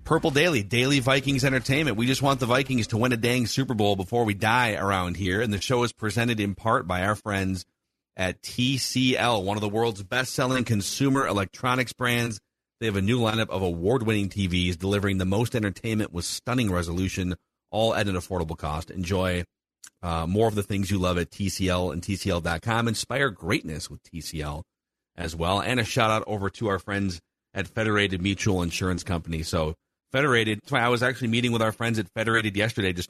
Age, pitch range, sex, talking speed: 40-59, 95-115 Hz, male, 190 wpm